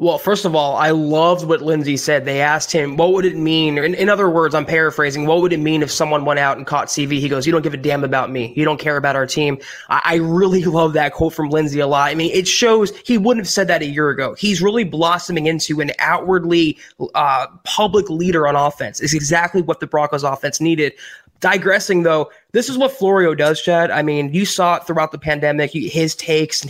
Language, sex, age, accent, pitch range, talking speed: English, male, 20-39, American, 155-190 Hz, 240 wpm